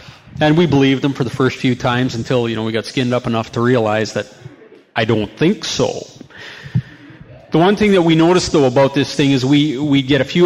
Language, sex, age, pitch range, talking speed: English, male, 40-59, 130-170 Hz, 230 wpm